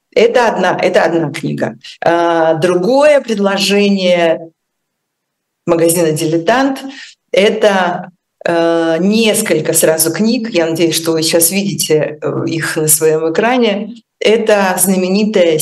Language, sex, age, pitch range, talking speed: Russian, female, 40-59, 155-190 Hz, 105 wpm